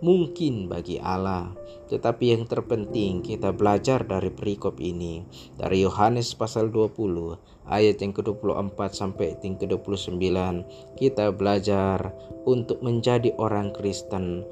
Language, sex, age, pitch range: Indonesian, male, 20-39, 95-115 Hz